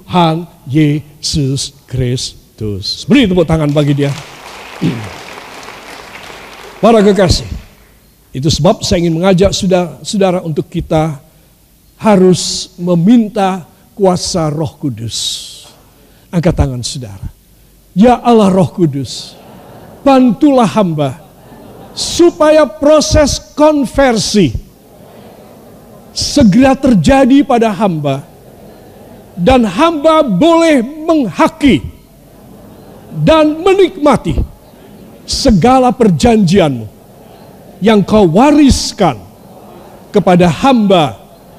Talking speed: 75 wpm